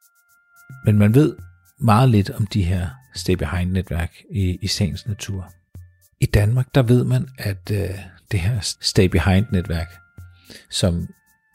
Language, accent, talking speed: Danish, native, 120 wpm